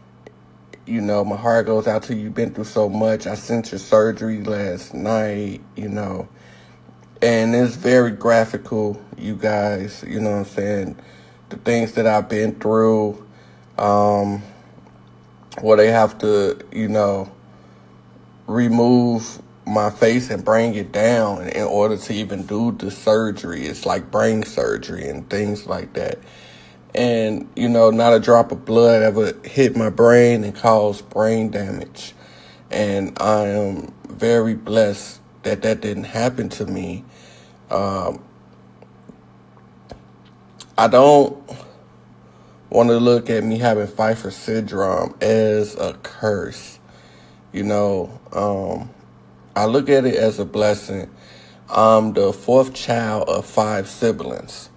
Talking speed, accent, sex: 135 wpm, American, male